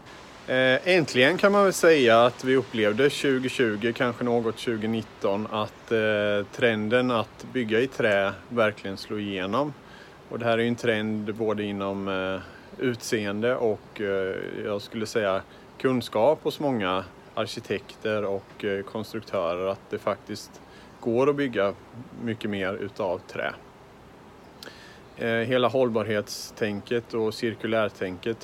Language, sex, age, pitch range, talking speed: Swedish, male, 30-49, 105-120 Hz, 110 wpm